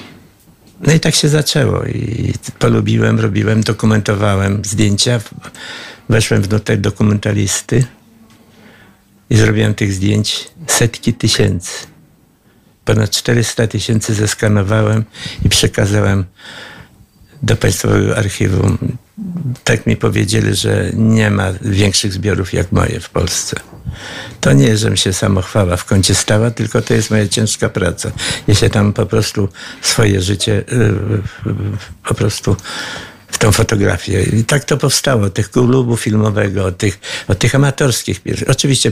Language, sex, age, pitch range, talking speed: Polish, male, 60-79, 100-115 Hz, 120 wpm